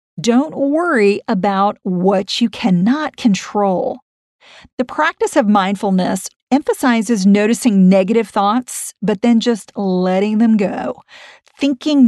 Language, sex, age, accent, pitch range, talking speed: English, female, 50-69, American, 200-255 Hz, 110 wpm